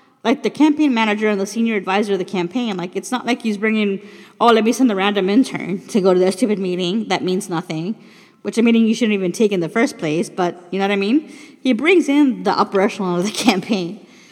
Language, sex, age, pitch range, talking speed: English, female, 30-49, 205-265 Hz, 245 wpm